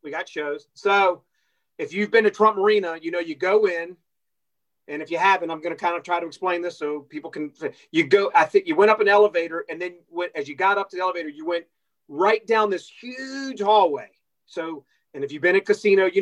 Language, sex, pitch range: English, male, 160-205 Hz